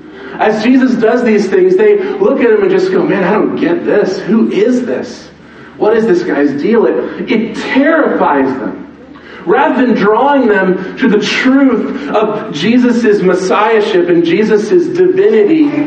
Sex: male